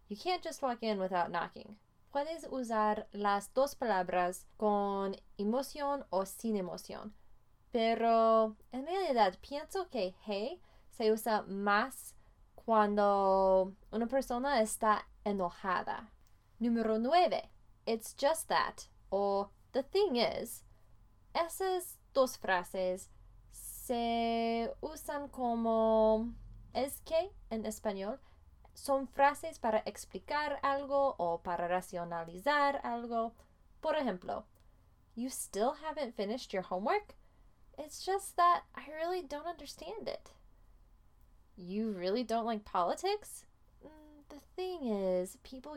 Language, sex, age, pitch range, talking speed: Spanish, female, 20-39, 200-290 Hz, 110 wpm